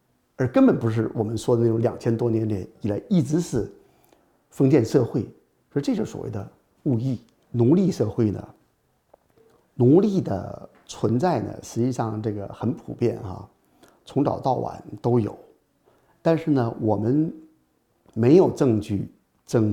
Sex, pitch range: male, 105-125 Hz